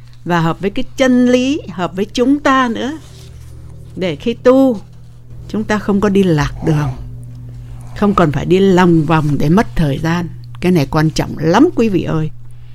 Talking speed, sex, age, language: 185 wpm, female, 60-79, English